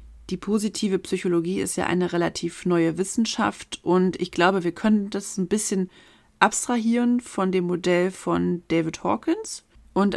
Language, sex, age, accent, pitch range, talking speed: German, female, 30-49, German, 170-195 Hz, 150 wpm